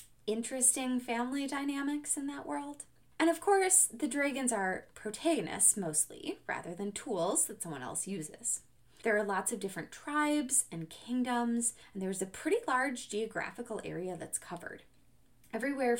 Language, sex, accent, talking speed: English, female, American, 145 wpm